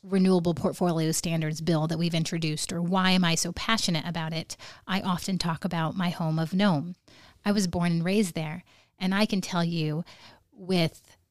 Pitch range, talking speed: 165-185 Hz, 185 wpm